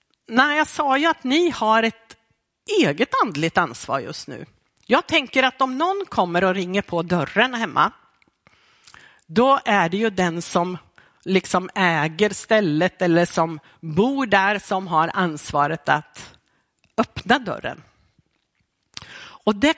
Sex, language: female, Swedish